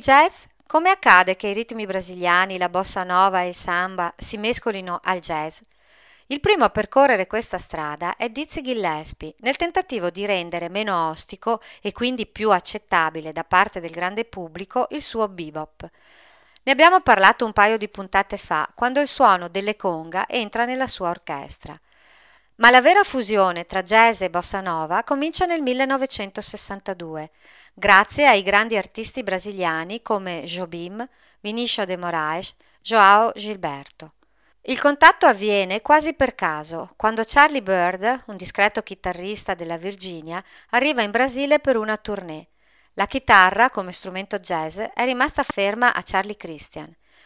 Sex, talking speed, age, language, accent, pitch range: female, 145 wpm, 40-59, Italian, native, 180-245 Hz